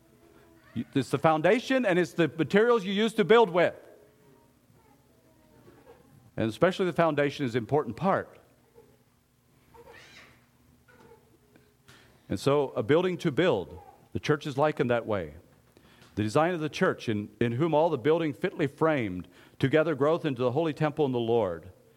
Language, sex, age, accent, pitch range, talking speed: English, male, 50-69, American, 140-200 Hz, 150 wpm